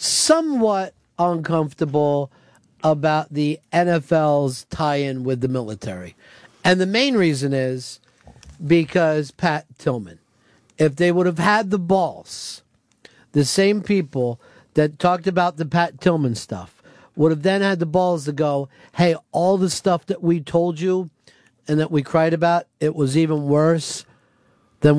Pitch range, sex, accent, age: 140-170 Hz, male, American, 50-69